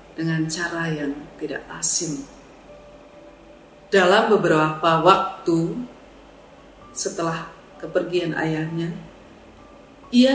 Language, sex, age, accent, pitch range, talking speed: Indonesian, female, 40-59, native, 165-225 Hz, 70 wpm